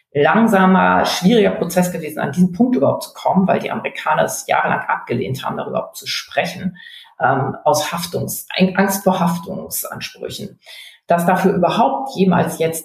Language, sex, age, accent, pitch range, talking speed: German, female, 40-59, German, 160-195 Hz, 145 wpm